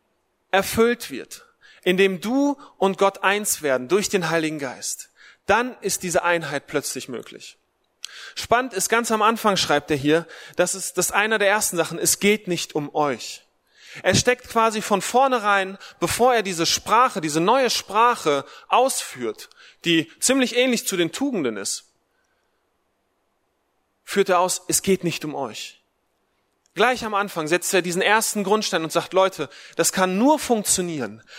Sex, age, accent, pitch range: male, 30-49, German, 155-215 Hz